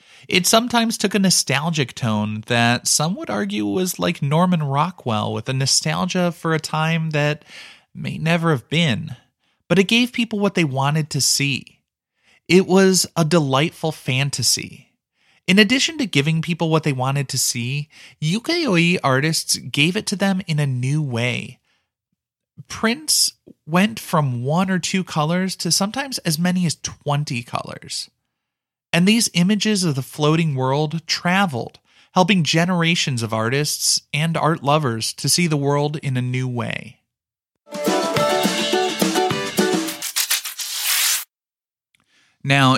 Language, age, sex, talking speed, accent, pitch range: English, 30-49, male, 135 wpm, American, 125-175 Hz